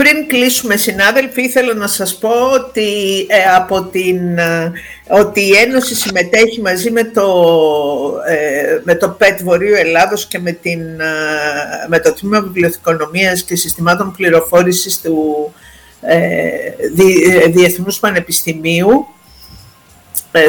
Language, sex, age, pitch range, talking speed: Greek, female, 50-69, 170-220 Hz, 120 wpm